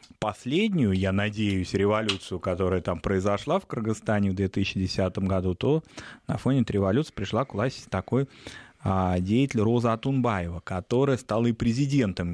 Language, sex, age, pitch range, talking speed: Russian, male, 20-39, 100-130 Hz, 140 wpm